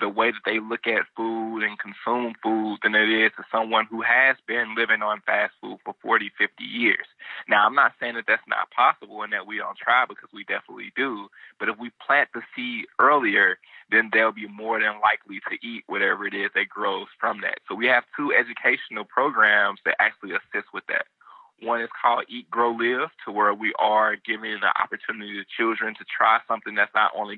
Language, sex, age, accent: English, male, 20-39, American